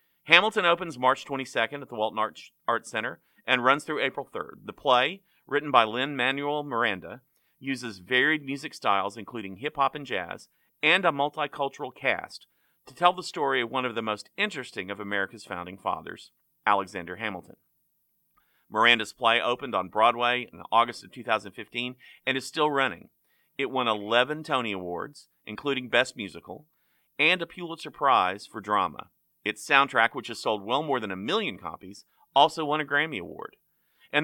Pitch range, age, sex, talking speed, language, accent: 105-145 Hz, 40-59, male, 160 wpm, English, American